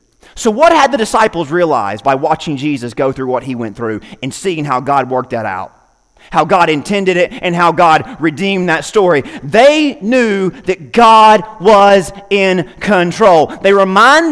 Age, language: 30-49, English